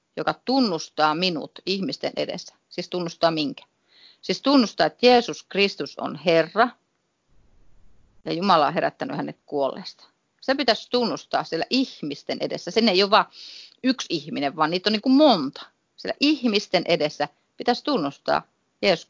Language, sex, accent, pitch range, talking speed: Finnish, female, native, 150-240 Hz, 140 wpm